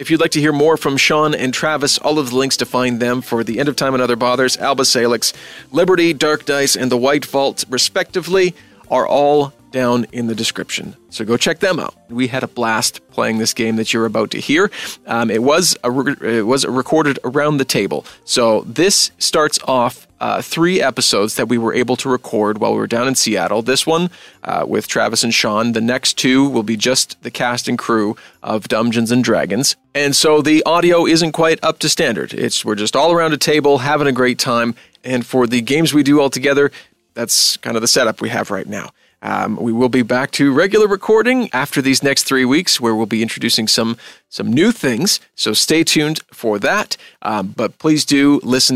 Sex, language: male, English